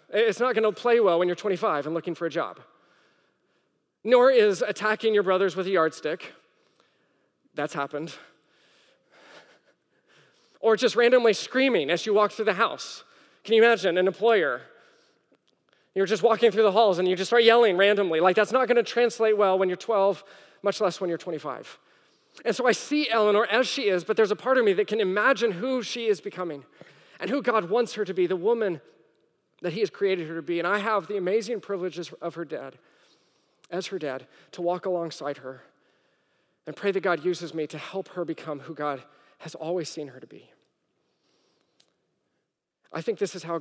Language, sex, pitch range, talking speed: English, male, 170-225 Hz, 195 wpm